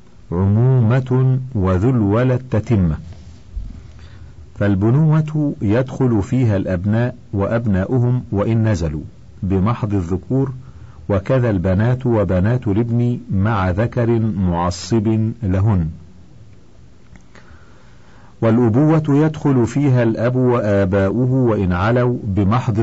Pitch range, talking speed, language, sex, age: 100-125 Hz, 75 wpm, Arabic, male, 50-69